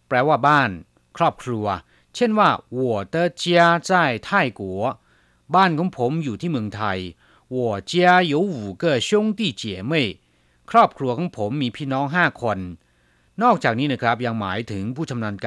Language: Chinese